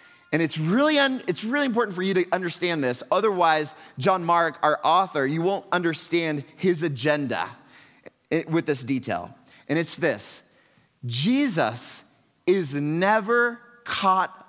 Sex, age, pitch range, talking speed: male, 30-49, 145-205 Hz, 135 wpm